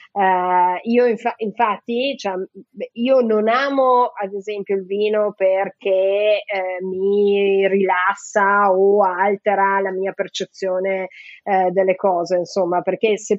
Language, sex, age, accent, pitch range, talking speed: Italian, female, 30-49, native, 190-230 Hz, 120 wpm